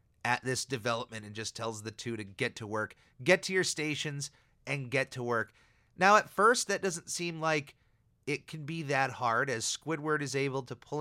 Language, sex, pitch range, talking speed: English, male, 120-165 Hz, 205 wpm